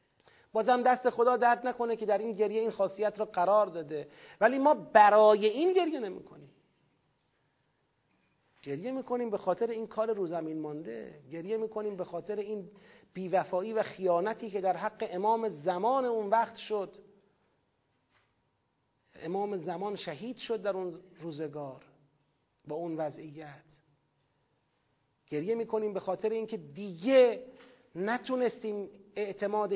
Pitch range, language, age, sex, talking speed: 165-220 Hz, Persian, 40-59, male, 125 wpm